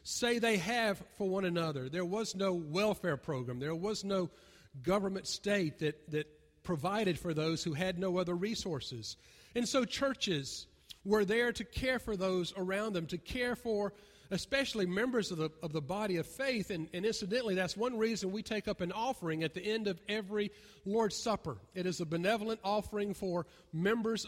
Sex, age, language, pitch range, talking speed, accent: male, 40-59, English, 155-210 Hz, 180 wpm, American